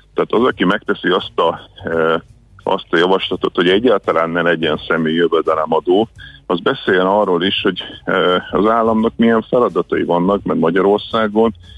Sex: male